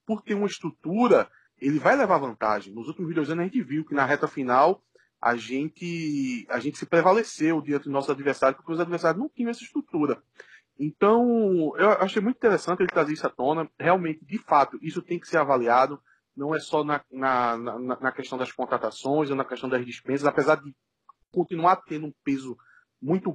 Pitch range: 140-175 Hz